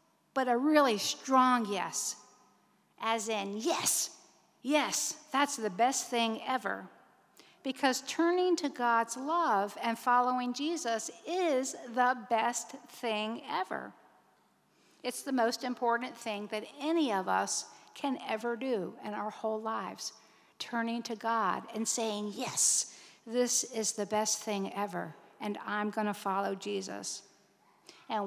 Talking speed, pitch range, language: 130 wpm, 215-270 Hz, English